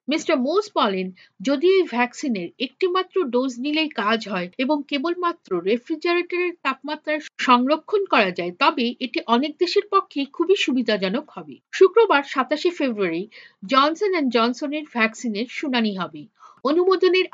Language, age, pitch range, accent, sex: Bengali, 50-69, 235-325 Hz, native, female